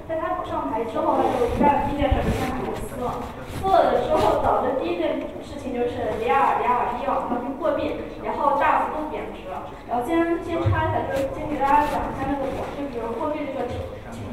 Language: Chinese